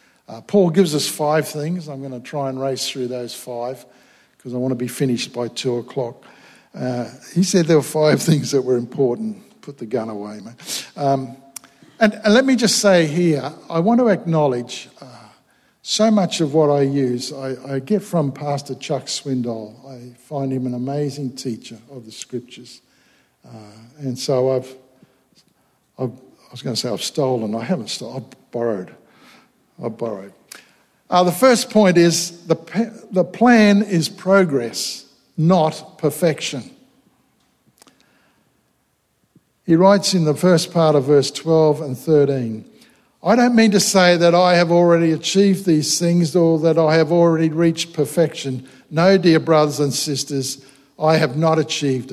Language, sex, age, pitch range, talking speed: English, male, 50-69, 130-170 Hz, 165 wpm